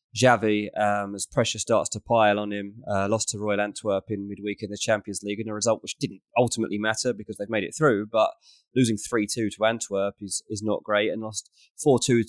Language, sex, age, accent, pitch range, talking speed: English, male, 20-39, British, 105-125 Hz, 215 wpm